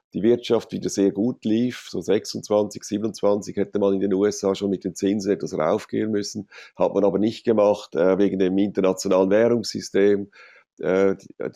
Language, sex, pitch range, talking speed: German, male, 95-110 Hz, 165 wpm